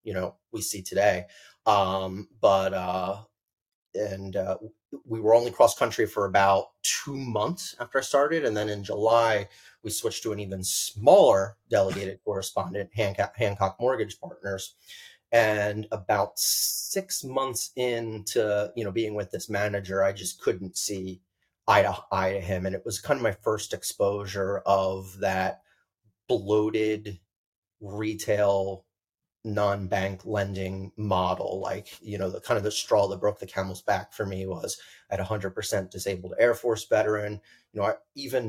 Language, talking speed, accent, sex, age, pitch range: English, 155 wpm, American, male, 30-49, 95-110 Hz